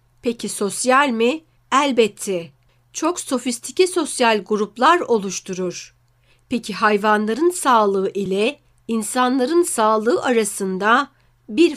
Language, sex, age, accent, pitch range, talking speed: Turkish, female, 60-79, native, 185-235 Hz, 85 wpm